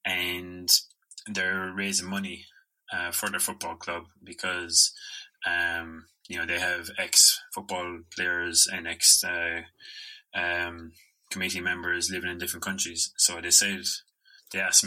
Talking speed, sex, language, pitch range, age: 135 wpm, male, English, 85-100 Hz, 20-39